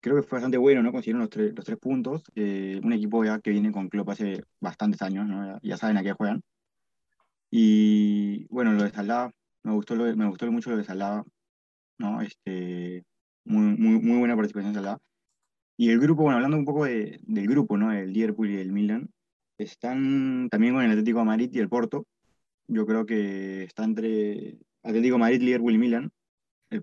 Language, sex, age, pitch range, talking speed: Spanish, male, 20-39, 105-140 Hz, 205 wpm